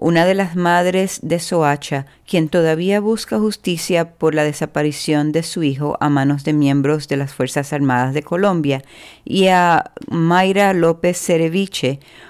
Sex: female